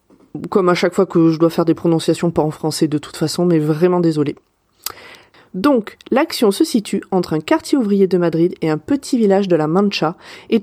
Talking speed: 210 wpm